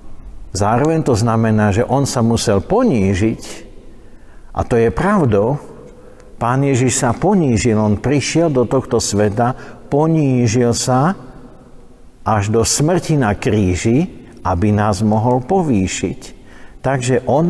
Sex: male